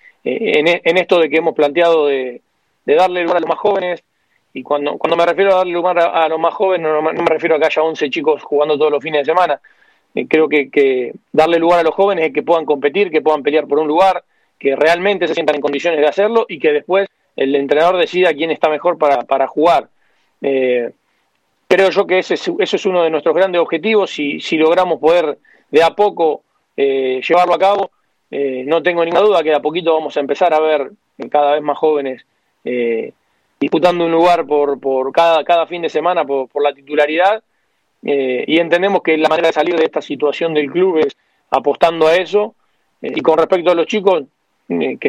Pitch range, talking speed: 145-180 Hz, 220 wpm